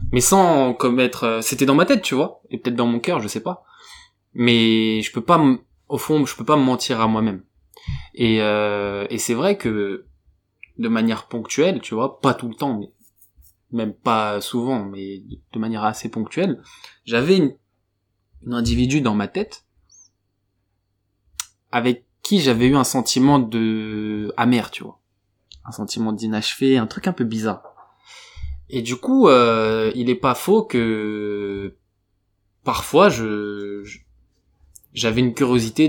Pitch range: 100-125 Hz